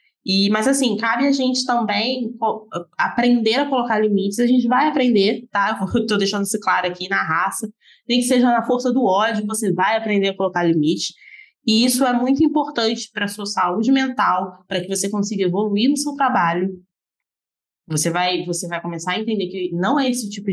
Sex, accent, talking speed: female, Brazilian, 185 wpm